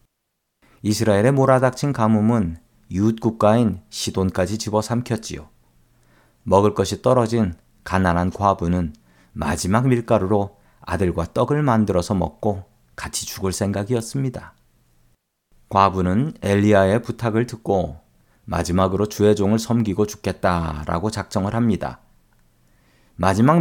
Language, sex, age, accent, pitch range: Korean, male, 40-59, native, 85-120 Hz